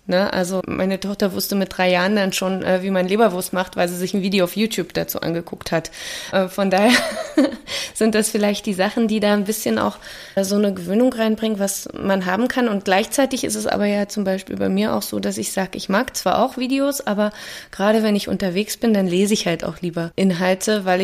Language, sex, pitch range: German, female, 180-215 Hz